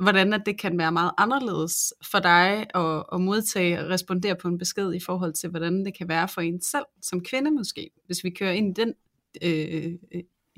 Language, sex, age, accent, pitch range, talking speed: Danish, female, 30-49, native, 175-215 Hz, 205 wpm